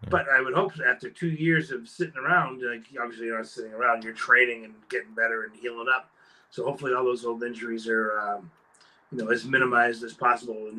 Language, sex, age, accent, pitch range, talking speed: English, male, 30-49, American, 120-170 Hz, 215 wpm